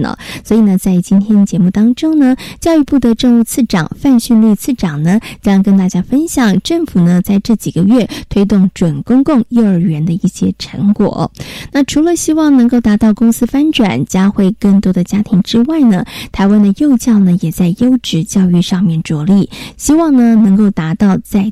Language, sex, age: Chinese, female, 20-39